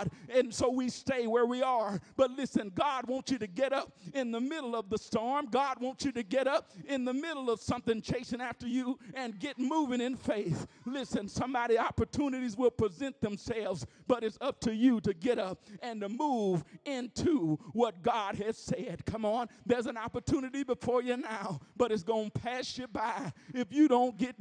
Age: 50-69